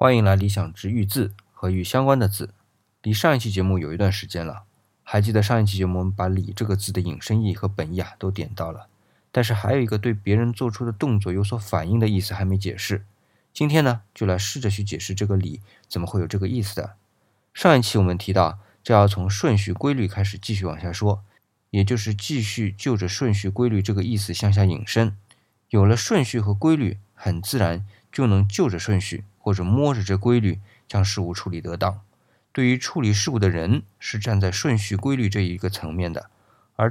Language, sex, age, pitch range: Chinese, male, 20-39, 95-110 Hz